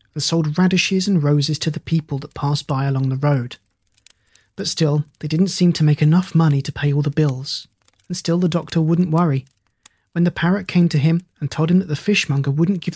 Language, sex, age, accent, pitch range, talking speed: English, male, 30-49, British, 125-165 Hz, 220 wpm